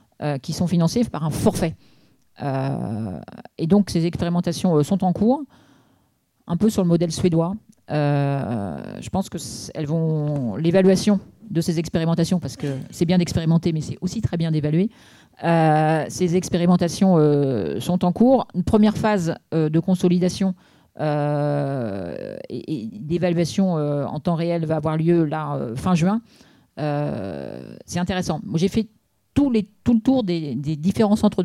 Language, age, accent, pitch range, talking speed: French, 40-59, French, 155-195 Hz, 160 wpm